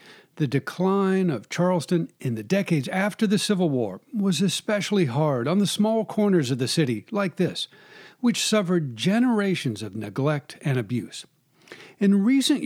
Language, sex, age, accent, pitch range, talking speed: English, male, 60-79, American, 145-200 Hz, 150 wpm